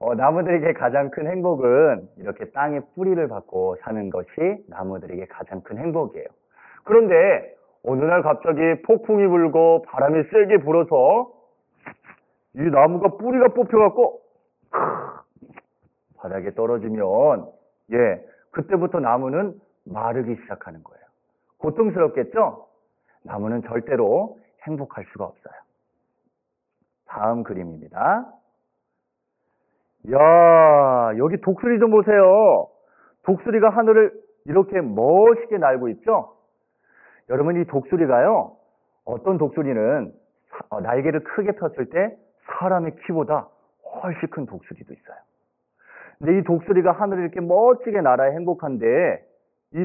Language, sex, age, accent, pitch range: Korean, male, 40-59, native, 150-230 Hz